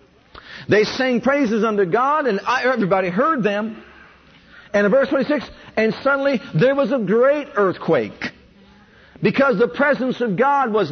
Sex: male